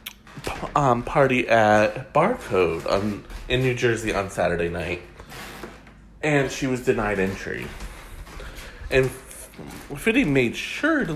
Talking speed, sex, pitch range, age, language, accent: 120 wpm, male, 105-145 Hz, 30-49, English, American